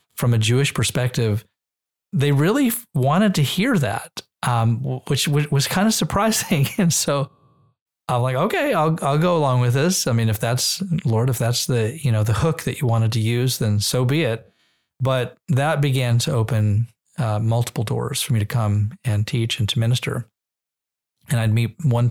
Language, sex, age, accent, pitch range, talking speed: English, male, 40-59, American, 110-135 Hz, 190 wpm